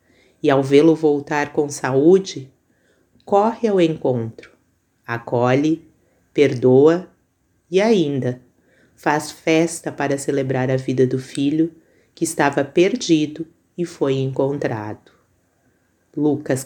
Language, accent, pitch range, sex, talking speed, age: Portuguese, Brazilian, 130-175 Hz, female, 100 wpm, 30-49